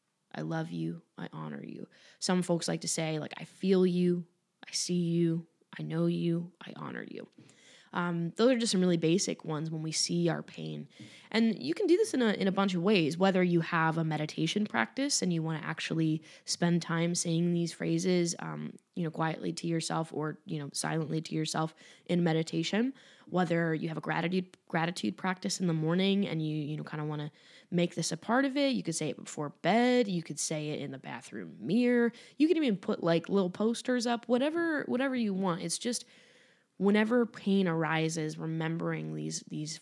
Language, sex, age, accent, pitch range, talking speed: English, female, 20-39, American, 160-190 Hz, 205 wpm